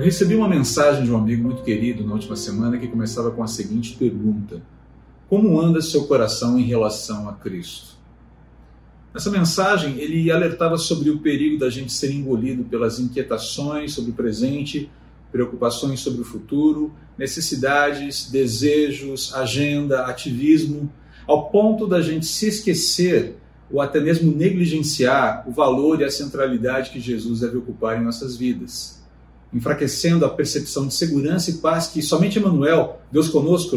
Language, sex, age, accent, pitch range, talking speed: Portuguese, male, 40-59, Brazilian, 120-160 Hz, 150 wpm